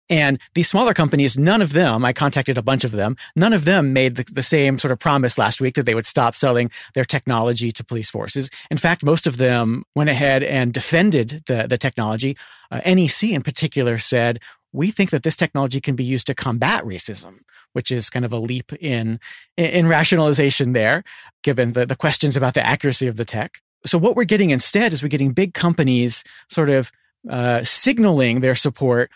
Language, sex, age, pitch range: English, male, 40-59, 125-160 Hz